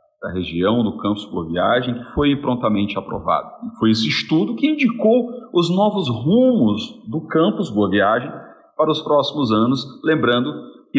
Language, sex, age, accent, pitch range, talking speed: Portuguese, male, 40-59, Brazilian, 105-175 Hz, 145 wpm